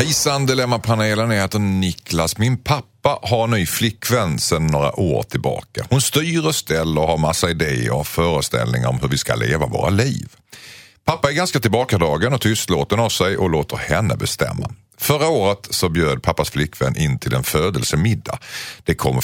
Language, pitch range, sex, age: Swedish, 80-125 Hz, male, 50-69